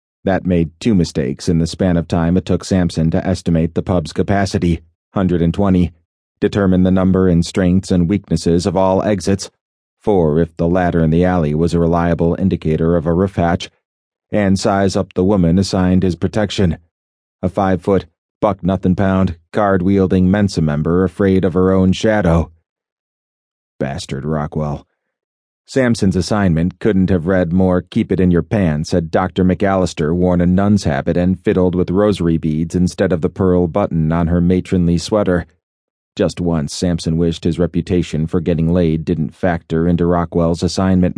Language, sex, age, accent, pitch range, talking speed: English, male, 30-49, American, 85-95 Hz, 165 wpm